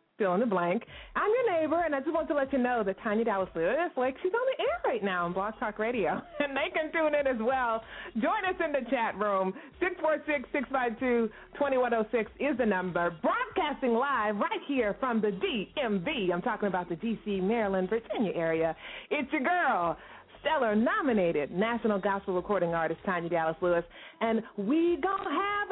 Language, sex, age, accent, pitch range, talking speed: English, female, 30-49, American, 200-320 Hz, 205 wpm